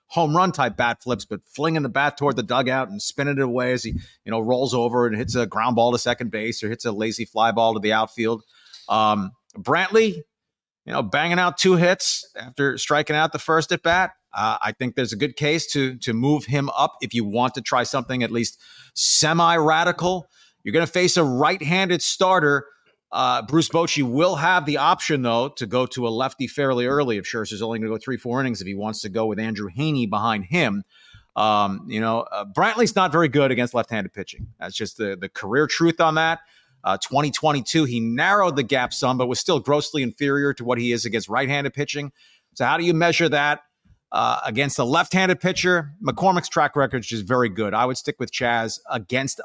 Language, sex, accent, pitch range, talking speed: English, male, American, 115-155 Hz, 220 wpm